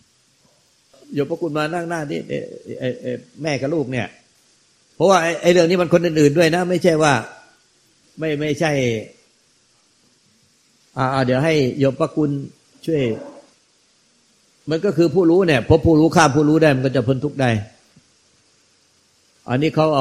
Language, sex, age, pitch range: Thai, male, 60-79, 125-155 Hz